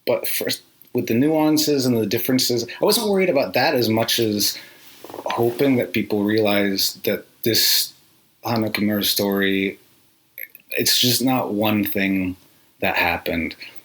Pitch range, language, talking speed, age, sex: 95-115 Hz, English, 135 wpm, 30-49, male